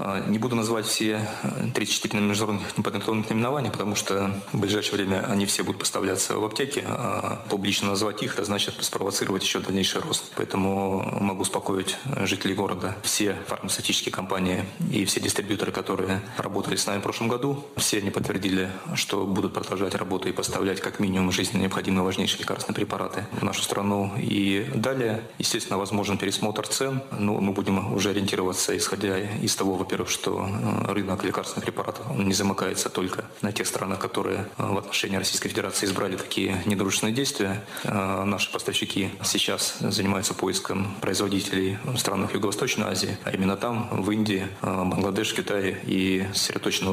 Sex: male